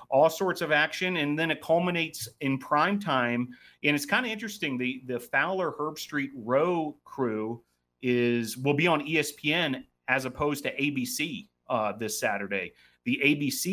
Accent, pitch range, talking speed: American, 120-140 Hz, 160 wpm